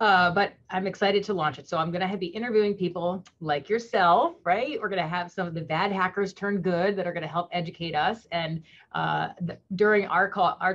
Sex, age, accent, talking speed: female, 30-49, American, 220 wpm